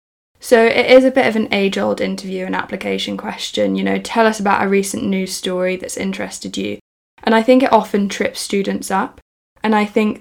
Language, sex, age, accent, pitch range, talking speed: English, female, 10-29, British, 195-220 Hz, 205 wpm